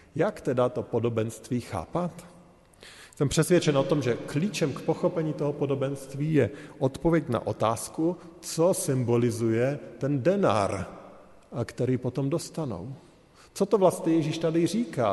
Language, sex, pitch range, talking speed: Slovak, male, 125-170 Hz, 130 wpm